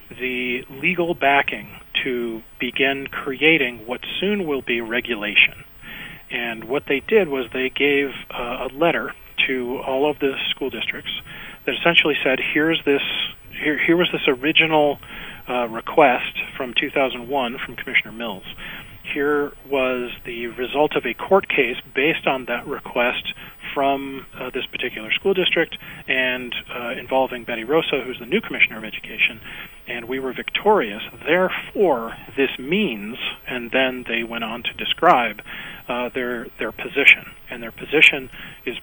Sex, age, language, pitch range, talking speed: male, 40-59, English, 125-150 Hz, 145 wpm